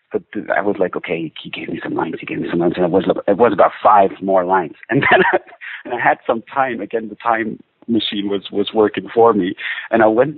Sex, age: male, 50-69